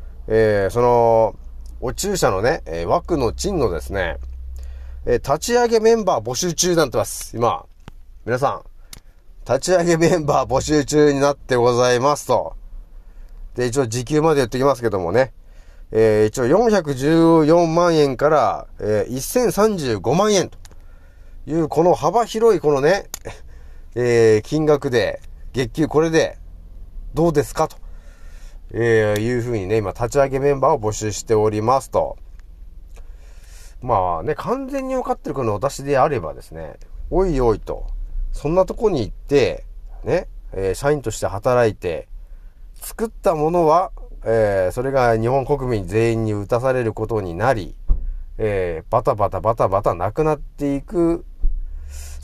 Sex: male